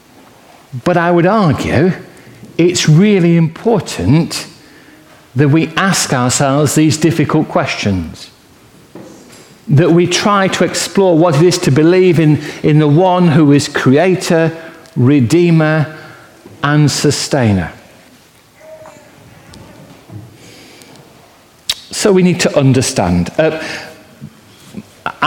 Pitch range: 145-180 Hz